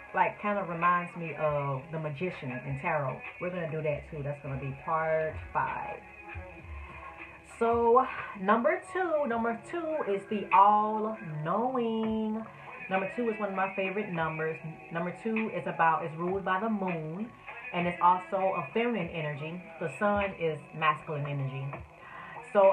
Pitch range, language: 165-210 Hz, English